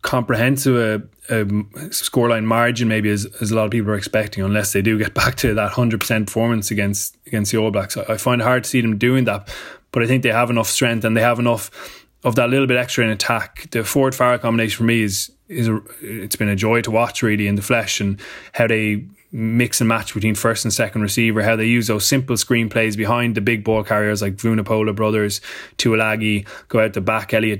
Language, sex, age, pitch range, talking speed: English, male, 20-39, 105-115 Hz, 235 wpm